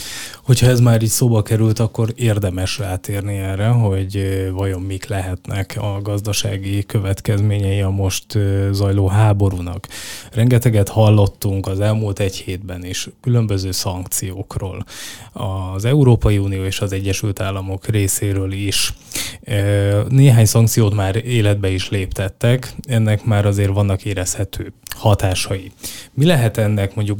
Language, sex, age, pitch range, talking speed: Hungarian, male, 20-39, 95-110 Hz, 120 wpm